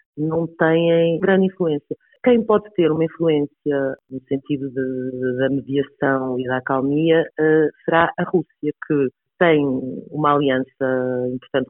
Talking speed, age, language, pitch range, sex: 140 wpm, 30-49, Portuguese, 125-155 Hz, female